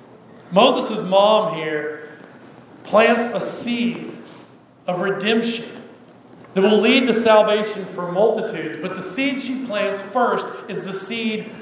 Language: English